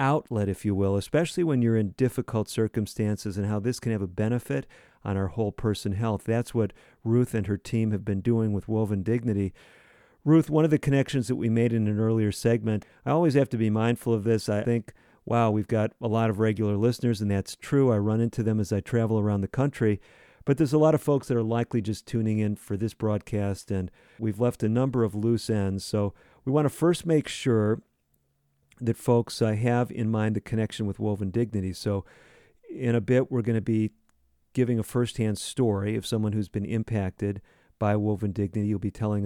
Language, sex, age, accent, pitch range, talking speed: English, male, 50-69, American, 100-120 Hz, 215 wpm